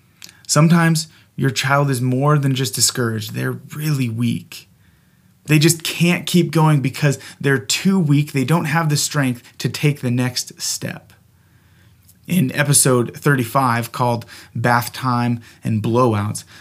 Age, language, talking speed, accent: 30-49, English, 135 wpm, American